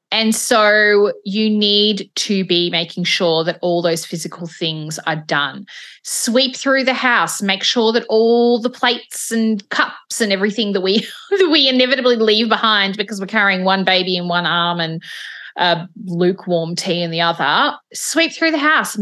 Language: English